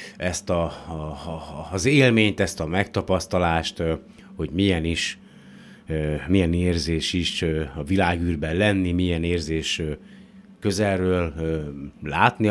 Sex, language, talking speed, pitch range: male, Hungarian, 100 wpm, 80-100 Hz